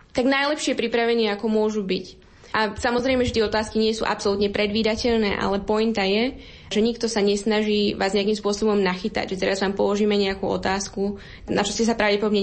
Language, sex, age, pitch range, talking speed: Slovak, female, 10-29, 205-250 Hz, 180 wpm